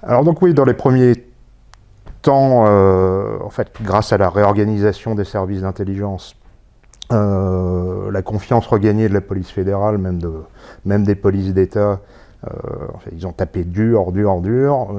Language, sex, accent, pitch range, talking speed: French, male, French, 95-110 Hz, 145 wpm